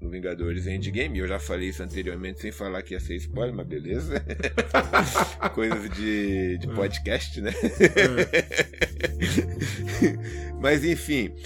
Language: Portuguese